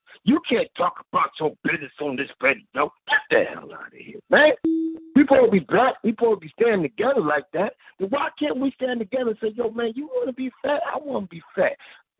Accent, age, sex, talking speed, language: American, 50-69, male, 235 wpm, English